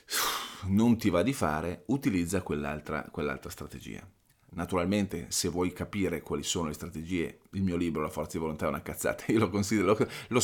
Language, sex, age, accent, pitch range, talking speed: Italian, male, 30-49, native, 90-115 Hz, 185 wpm